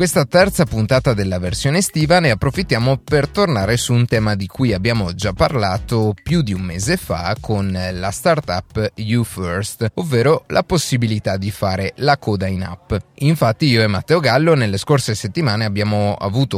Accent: native